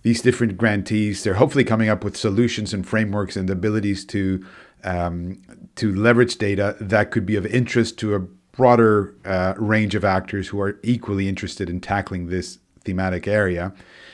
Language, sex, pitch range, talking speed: English, male, 95-115 Hz, 165 wpm